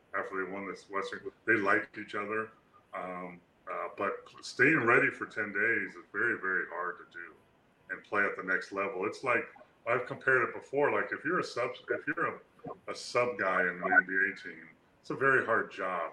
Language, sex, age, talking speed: English, female, 30-49, 205 wpm